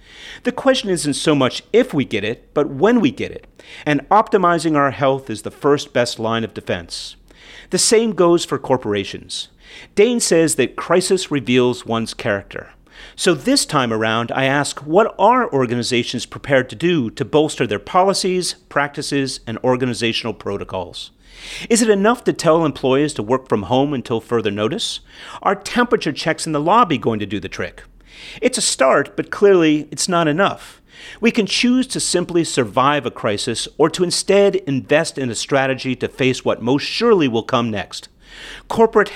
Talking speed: 175 wpm